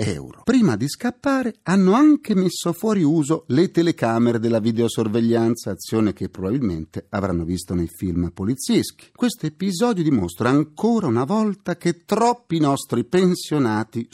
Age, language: 50-69, Italian